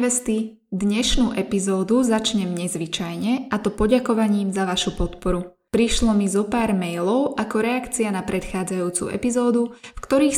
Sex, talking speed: female, 135 wpm